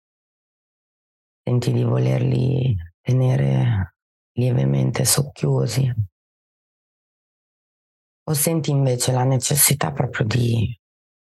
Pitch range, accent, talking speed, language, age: 100-125 Hz, native, 70 wpm, Italian, 30-49